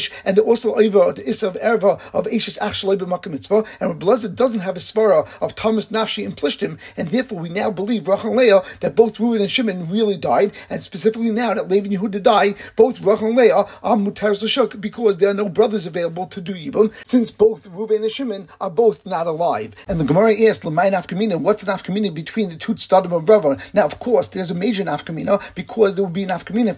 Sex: male